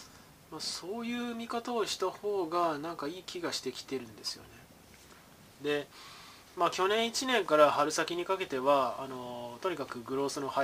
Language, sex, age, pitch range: Japanese, male, 20-39, 130-185 Hz